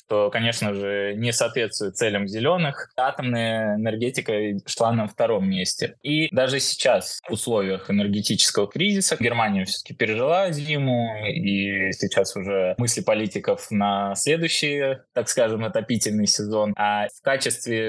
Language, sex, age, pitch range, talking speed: Russian, male, 20-39, 105-130 Hz, 125 wpm